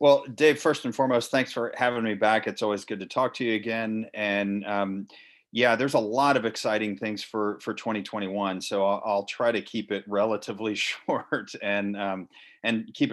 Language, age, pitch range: English, 40-59, 100-120 Hz